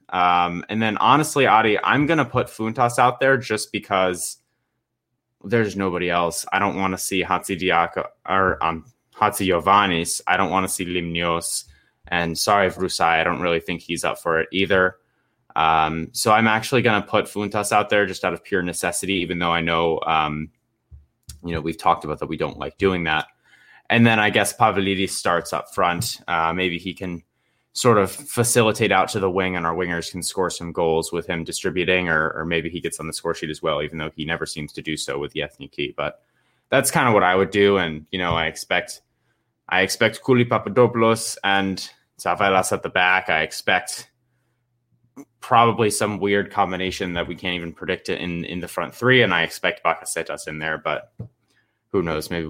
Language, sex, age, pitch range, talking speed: English, male, 20-39, 85-110 Hz, 205 wpm